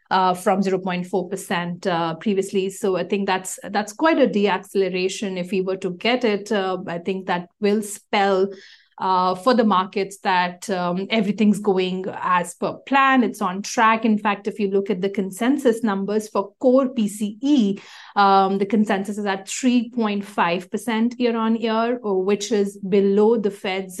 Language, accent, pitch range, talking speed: English, Indian, 185-220 Hz, 160 wpm